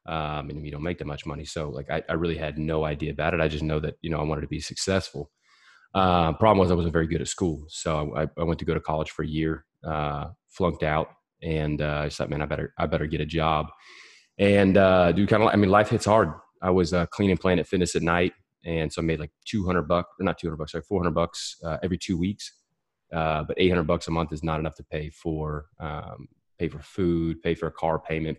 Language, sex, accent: English, male, American